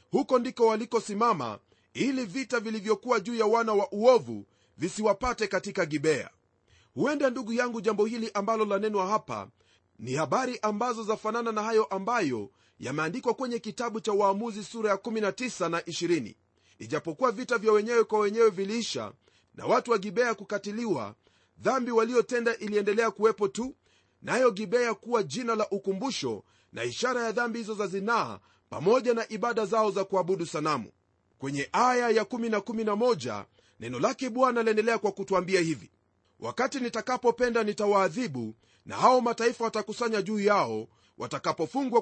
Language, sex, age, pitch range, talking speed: Swahili, male, 40-59, 190-235 Hz, 145 wpm